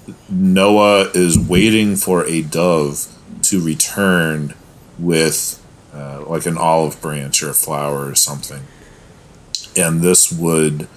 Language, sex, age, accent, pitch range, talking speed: English, male, 40-59, American, 75-90 Hz, 120 wpm